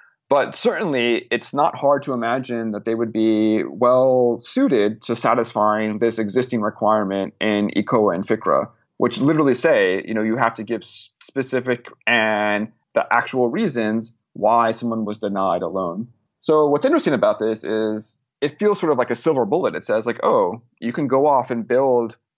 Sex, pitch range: male, 110-130 Hz